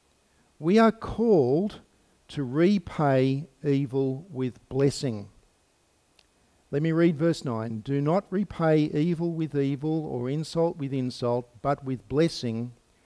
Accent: Australian